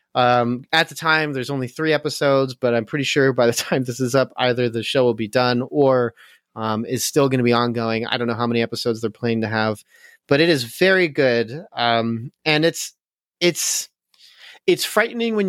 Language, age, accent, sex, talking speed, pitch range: English, 30-49, American, male, 210 wpm, 115-145 Hz